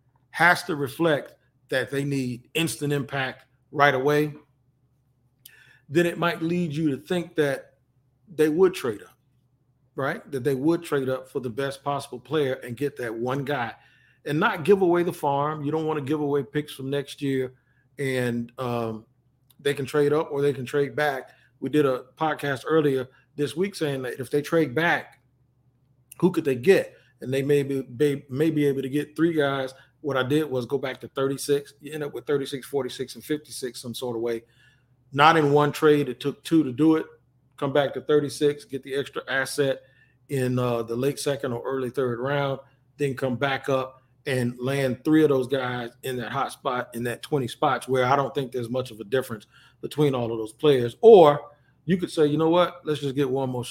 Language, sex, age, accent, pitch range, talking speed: English, male, 40-59, American, 130-150 Hz, 205 wpm